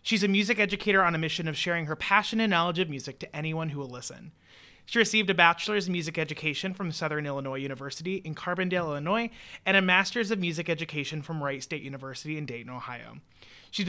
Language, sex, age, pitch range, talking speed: English, male, 30-49, 145-195 Hz, 205 wpm